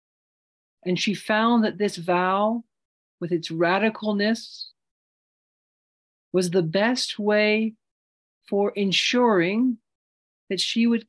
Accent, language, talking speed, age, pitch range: American, English, 95 wpm, 50-69, 175-220 Hz